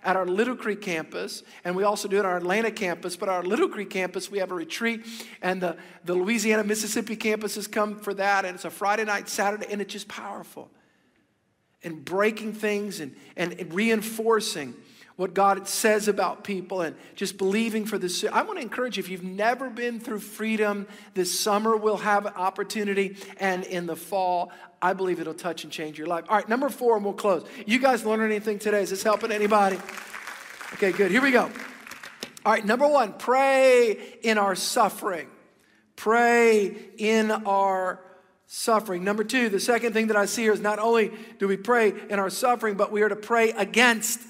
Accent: American